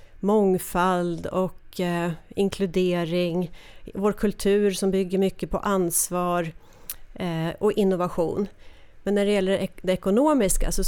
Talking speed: 125 wpm